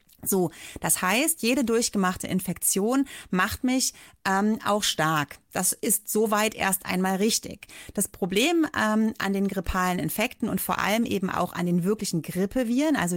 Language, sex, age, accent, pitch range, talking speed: German, female, 30-49, German, 185-225 Hz, 155 wpm